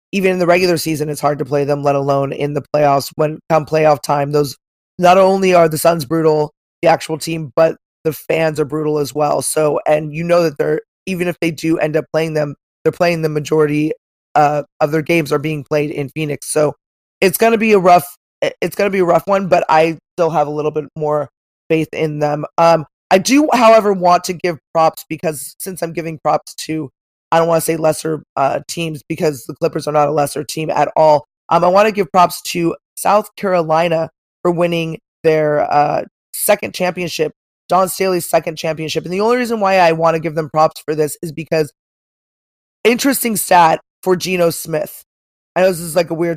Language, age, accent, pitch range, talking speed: English, 20-39, American, 150-175 Hz, 215 wpm